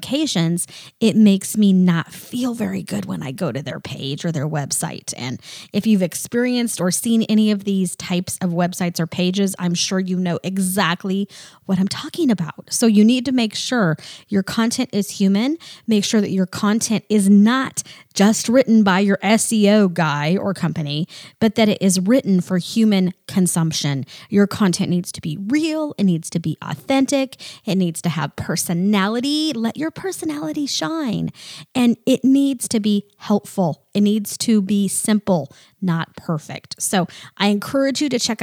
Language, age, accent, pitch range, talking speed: English, 20-39, American, 170-215 Hz, 175 wpm